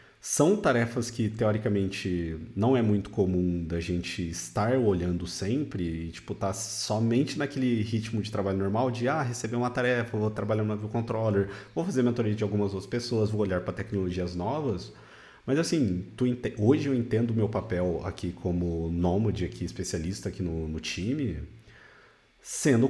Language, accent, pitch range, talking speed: Portuguese, Brazilian, 90-120 Hz, 170 wpm